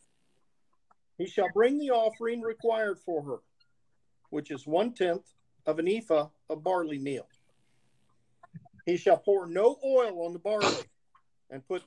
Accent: American